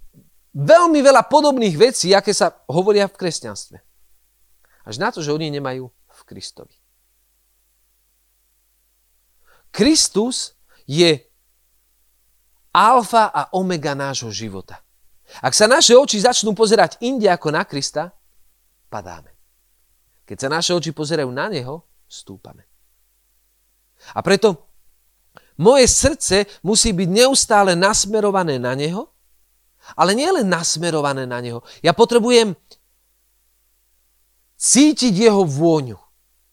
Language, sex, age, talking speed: Slovak, male, 40-59, 105 wpm